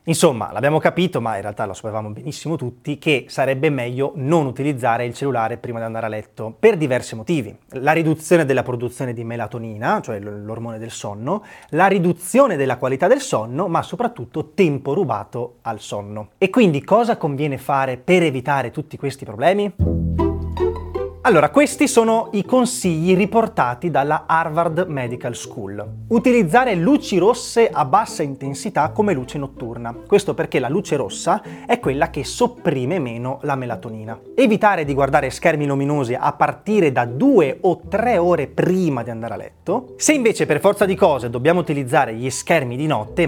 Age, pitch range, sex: 30-49, 120-175 Hz, male